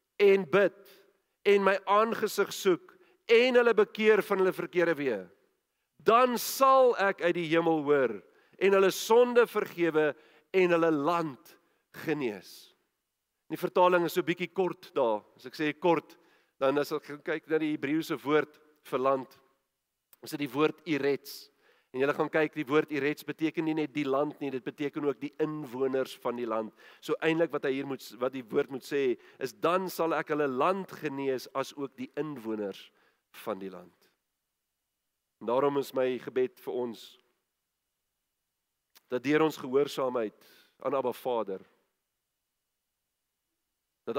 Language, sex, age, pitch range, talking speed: English, male, 50-69, 135-185 Hz, 160 wpm